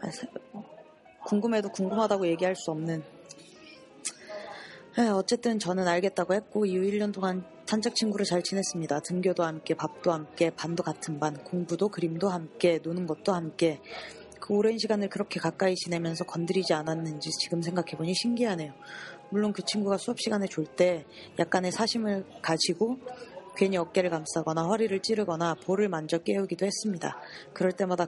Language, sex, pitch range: Korean, female, 170-205 Hz